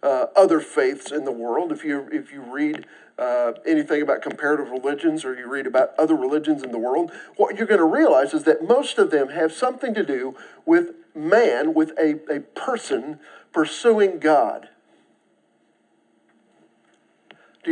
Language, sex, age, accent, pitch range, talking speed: English, male, 50-69, American, 150-240 Hz, 165 wpm